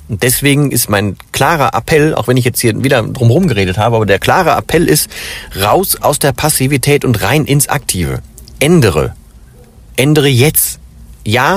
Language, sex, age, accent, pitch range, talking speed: German, male, 40-59, German, 110-145 Hz, 160 wpm